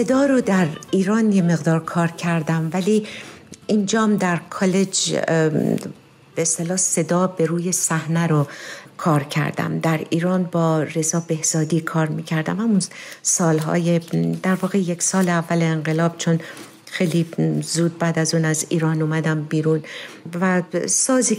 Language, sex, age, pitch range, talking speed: Persian, female, 50-69, 160-185 Hz, 135 wpm